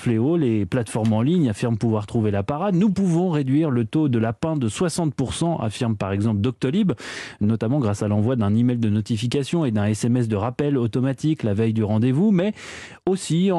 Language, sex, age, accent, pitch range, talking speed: French, male, 30-49, French, 110-155 Hz, 185 wpm